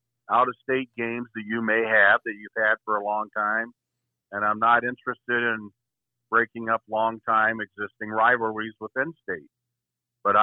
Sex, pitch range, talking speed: male, 105-120 Hz, 150 wpm